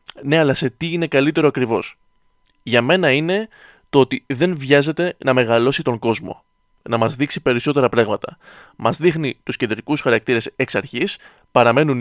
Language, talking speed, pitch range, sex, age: Greek, 155 wpm, 120-165 Hz, male, 20-39